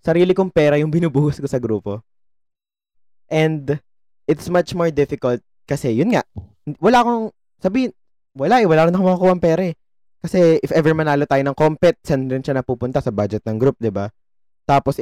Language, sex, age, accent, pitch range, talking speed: Filipino, male, 20-39, native, 115-155 Hz, 170 wpm